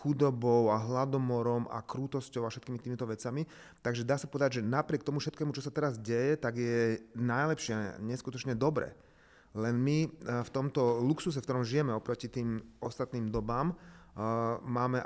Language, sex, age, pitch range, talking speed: Slovak, male, 30-49, 115-130 Hz, 155 wpm